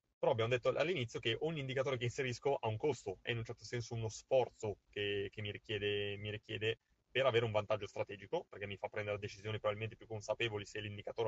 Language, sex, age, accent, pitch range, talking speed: Italian, male, 20-39, native, 110-130 Hz, 215 wpm